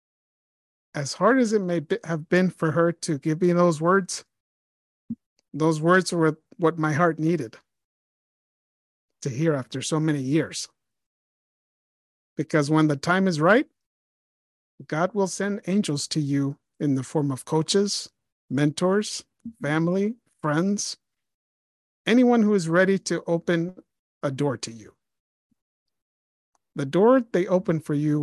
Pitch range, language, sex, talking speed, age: 145-190 Hz, English, male, 135 wpm, 50-69